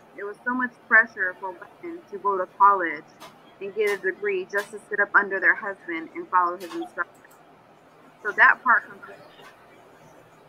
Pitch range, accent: 195-260 Hz, American